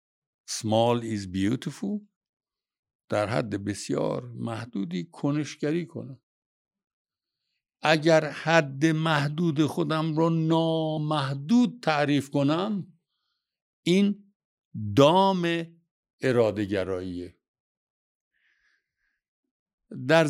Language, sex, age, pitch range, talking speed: Persian, male, 60-79, 115-165 Hz, 60 wpm